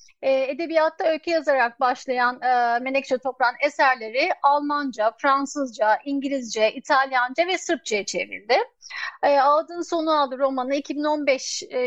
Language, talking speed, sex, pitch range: Turkish, 110 wpm, female, 255-305 Hz